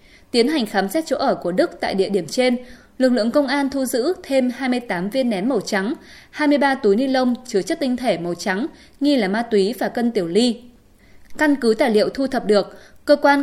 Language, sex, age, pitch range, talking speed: Vietnamese, female, 20-39, 215-275 Hz, 230 wpm